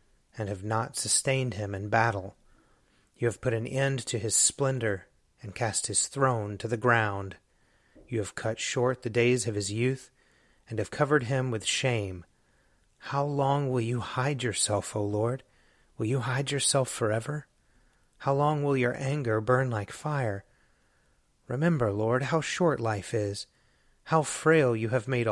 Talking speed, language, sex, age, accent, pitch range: 165 wpm, English, male, 30-49, American, 110-135 Hz